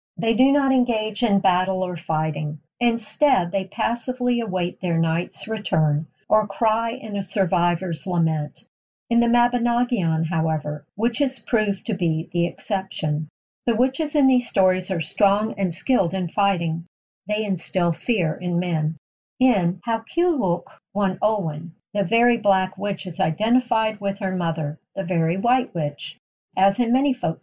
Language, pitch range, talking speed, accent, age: English, 170-235 Hz, 150 wpm, American, 50-69